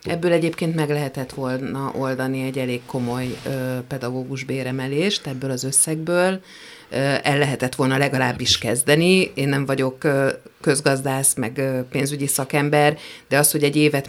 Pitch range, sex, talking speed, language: 130-150 Hz, female, 130 wpm, Hungarian